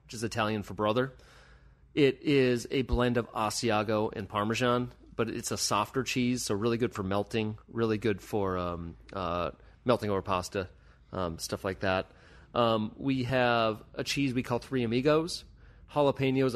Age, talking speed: 30-49, 165 wpm